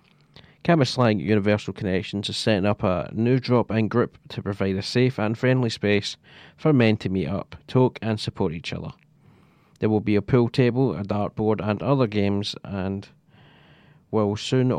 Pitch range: 100-130 Hz